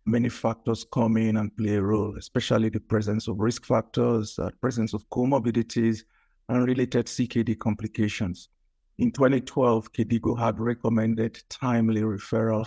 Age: 50-69